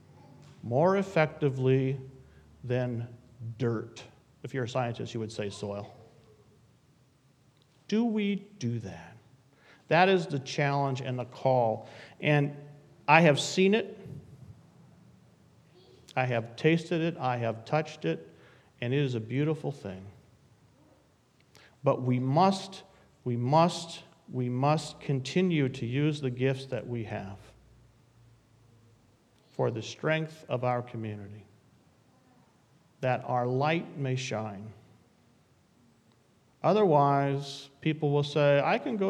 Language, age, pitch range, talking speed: English, 50-69, 115-145 Hz, 115 wpm